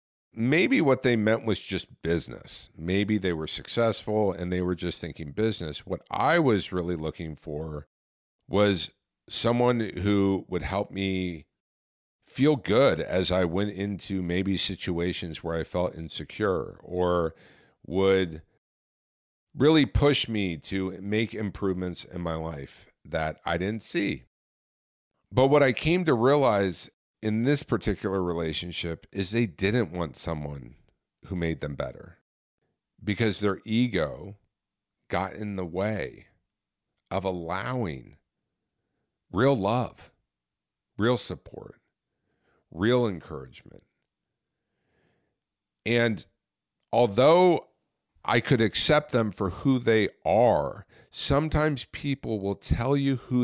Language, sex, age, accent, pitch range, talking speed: English, male, 50-69, American, 85-115 Hz, 120 wpm